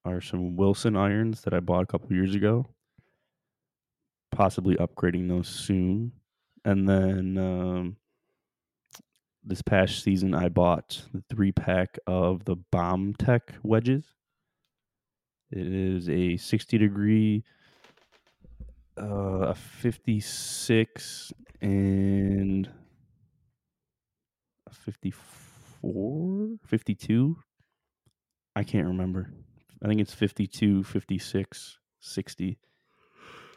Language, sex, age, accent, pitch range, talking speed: English, male, 20-39, American, 95-110 Hz, 105 wpm